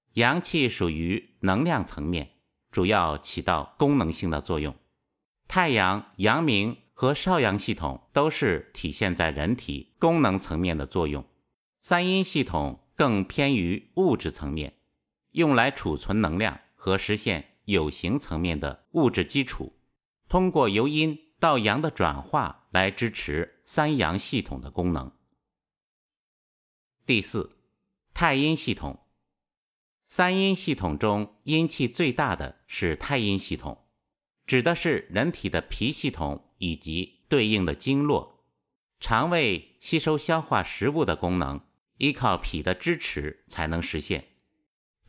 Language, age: Chinese, 50-69